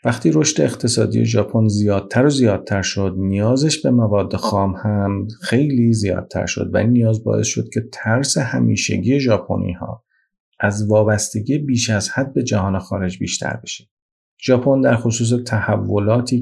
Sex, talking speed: male, 145 wpm